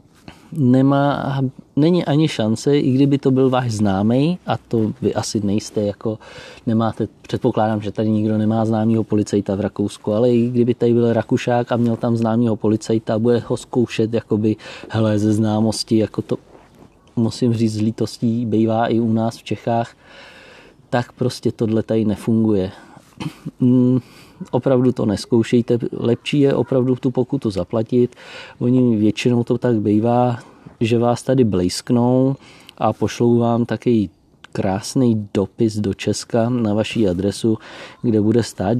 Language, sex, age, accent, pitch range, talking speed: Czech, male, 30-49, native, 105-120 Hz, 145 wpm